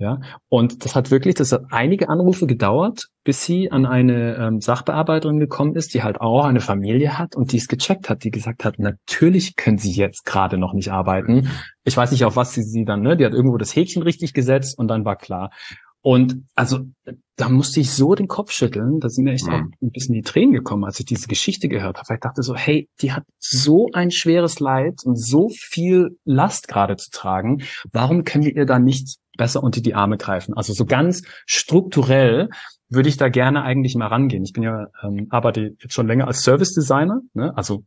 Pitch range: 110-145 Hz